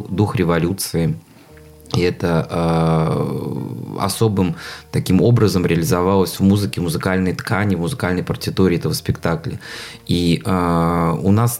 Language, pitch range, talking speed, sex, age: Russian, 85-100 Hz, 110 wpm, male, 20-39